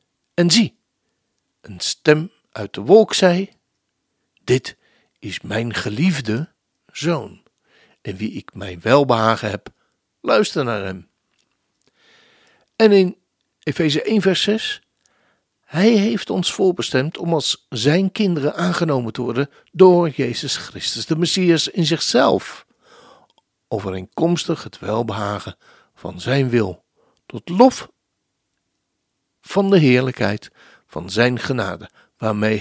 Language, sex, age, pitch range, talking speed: Dutch, male, 60-79, 110-180 Hz, 110 wpm